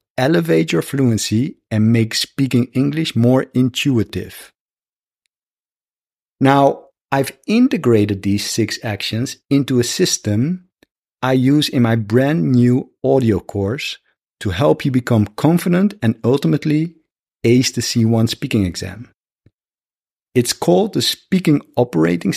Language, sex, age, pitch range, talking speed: English, male, 50-69, 115-150 Hz, 115 wpm